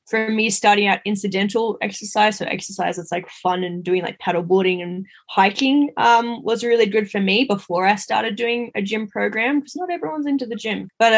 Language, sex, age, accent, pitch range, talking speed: English, female, 10-29, Australian, 190-235 Hz, 205 wpm